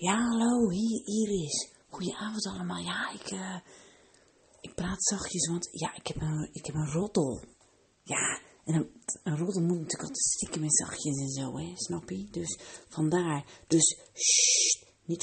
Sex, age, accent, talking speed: female, 40-59, Dutch, 160 wpm